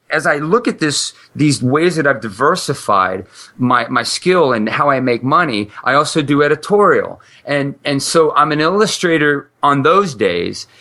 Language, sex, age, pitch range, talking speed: English, male, 30-49, 125-175 Hz, 170 wpm